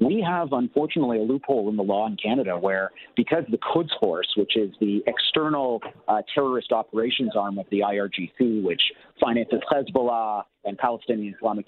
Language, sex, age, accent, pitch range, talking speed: English, male, 40-59, American, 105-130 Hz, 165 wpm